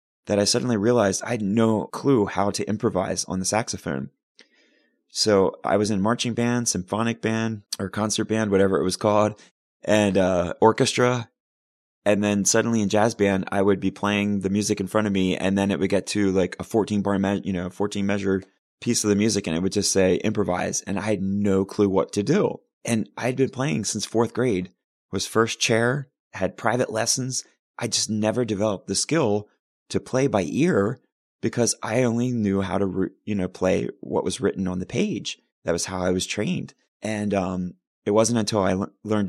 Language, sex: English, male